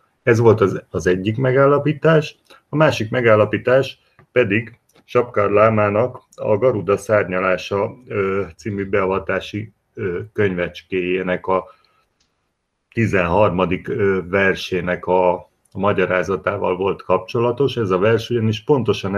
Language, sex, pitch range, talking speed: Hungarian, male, 95-115 Hz, 90 wpm